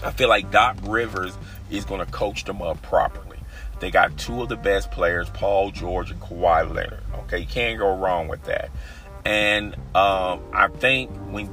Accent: American